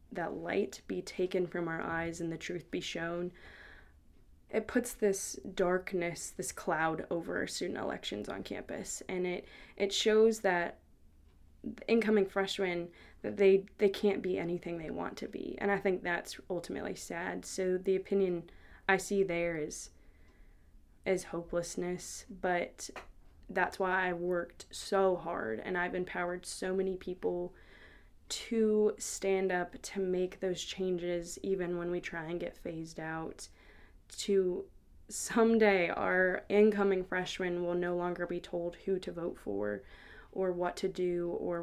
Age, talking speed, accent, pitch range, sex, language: 20-39, 150 wpm, American, 175-195 Hz, female, English